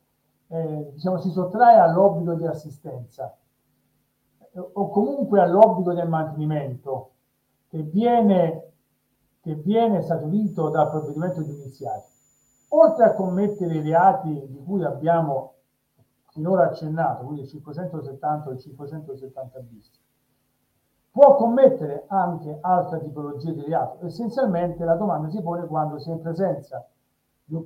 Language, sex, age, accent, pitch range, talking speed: Italian, male, 50-69, native, 150-210 Hz, 115 wpm